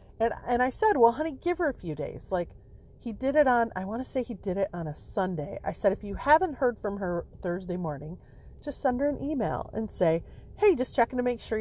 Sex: female